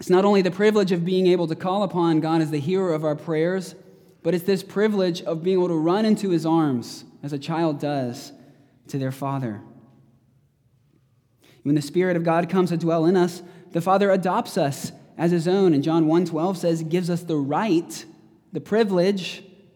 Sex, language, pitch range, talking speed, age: male, English, 135-180 Hz, 195 wpm, 20-39